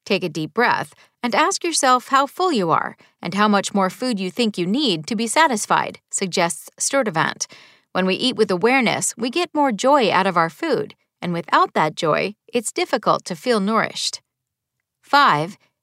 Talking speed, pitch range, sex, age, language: 180 wpm, 185-265 Hz, female, 40-59, English